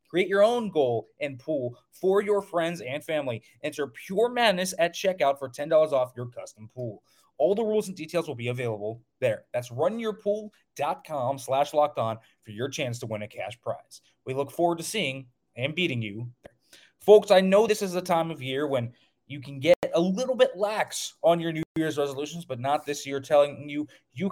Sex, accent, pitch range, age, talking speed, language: male, American, 135-180 Hz, 20-39, 200 wpm, English